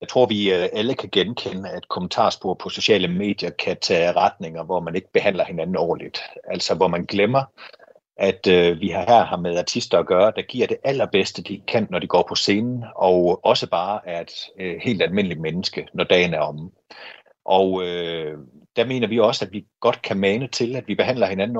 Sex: male